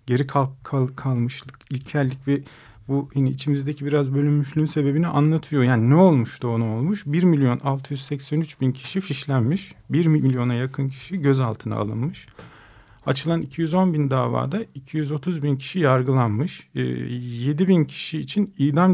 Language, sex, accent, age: Turkish, male, native, 40-59